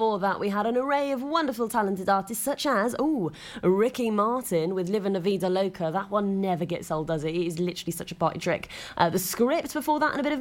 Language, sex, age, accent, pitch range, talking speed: English, female, 20-39, British, 180-255 Hz, 250 wpm